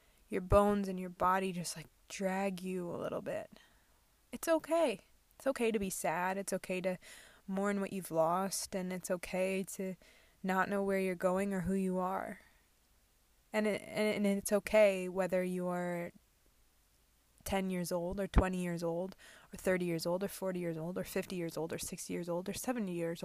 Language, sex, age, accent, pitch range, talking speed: English, female, 20-39, American, 165-200 Hz, 195 wpm